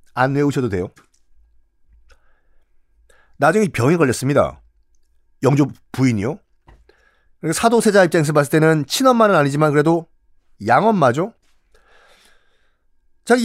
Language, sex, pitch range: Korean, male, 130-220 Hz